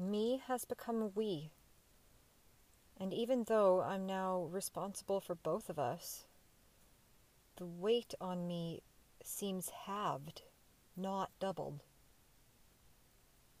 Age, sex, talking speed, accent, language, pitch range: 40-59, female, 95 wpm, American, English, 165-200 Hz